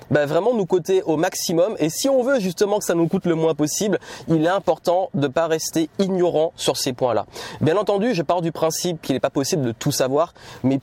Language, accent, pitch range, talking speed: French, French, 135-180 Hz, 240 wpm